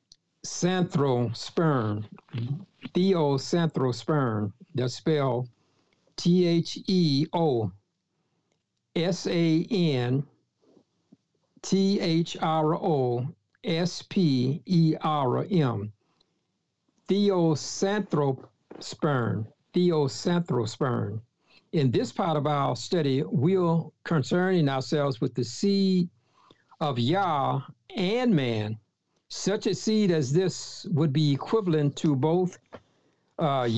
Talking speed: 90 wpm